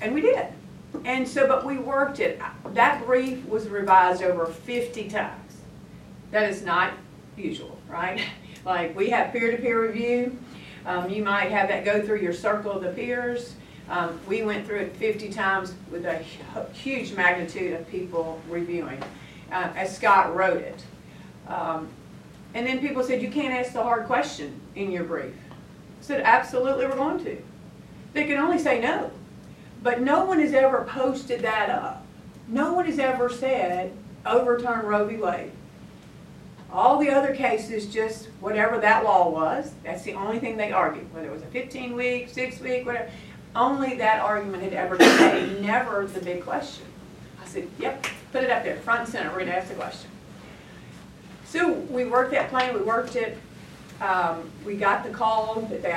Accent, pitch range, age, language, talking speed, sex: American, 185-250 Hz, 50-69, English, 175 wpm, female